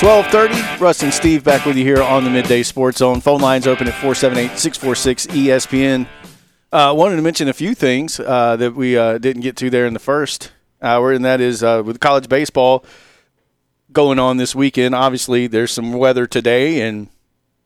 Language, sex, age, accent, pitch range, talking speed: English, male, 40-59, American, 120-135 Hz, 185 wpm